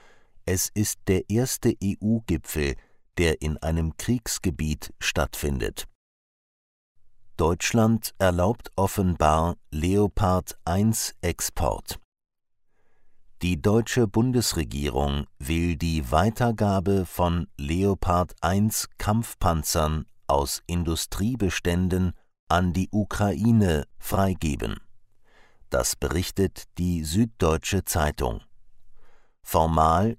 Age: 50-69